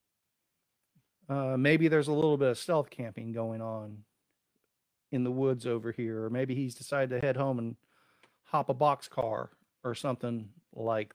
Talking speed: 160 wpm